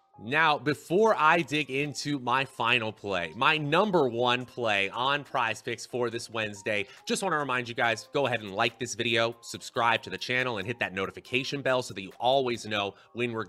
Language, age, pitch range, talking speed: English, 30-49, 110-145 Hz, 205 wpm